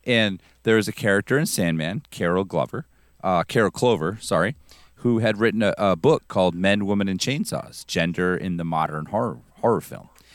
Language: English